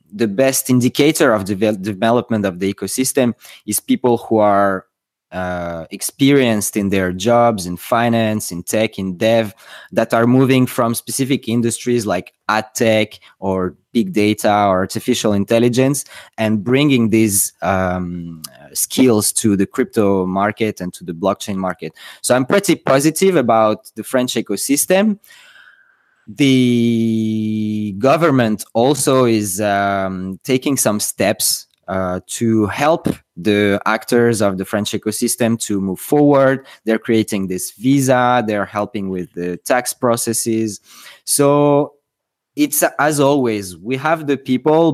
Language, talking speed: English, 135 wpm